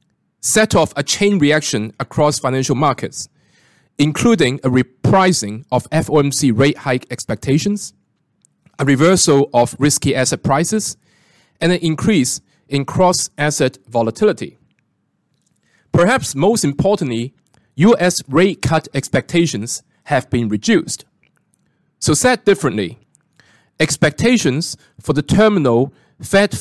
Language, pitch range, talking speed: English, 130-175 Hz, 105 wpm